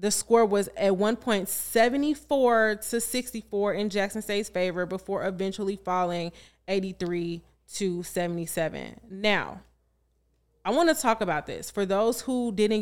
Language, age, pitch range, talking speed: English, 20-39, 180-225 Hz, 130 wpm